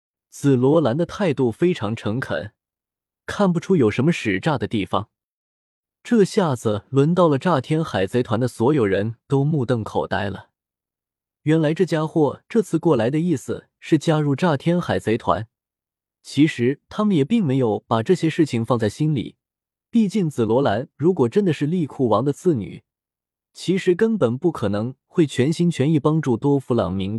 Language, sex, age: Chinese, male, 20-39